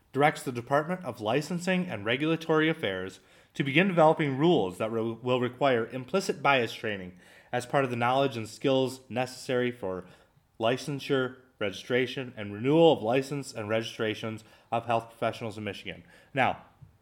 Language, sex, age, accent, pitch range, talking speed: English, male, 30-49, American, 110-145 Hz, 145 wpm